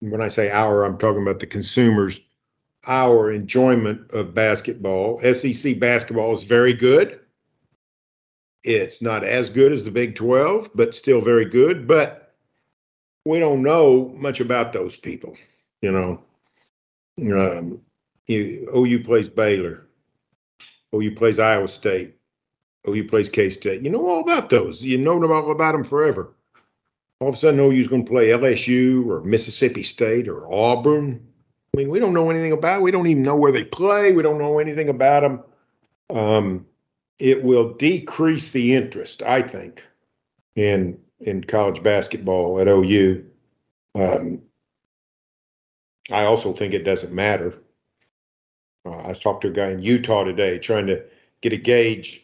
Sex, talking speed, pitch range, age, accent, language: male, 155 wpm, 105-140 Hz, 50-69, American, English